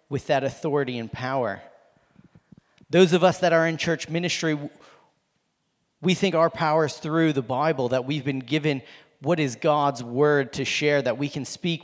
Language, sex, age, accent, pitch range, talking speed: English, male, 40-59, American, 145-175 Hz, 175 wpm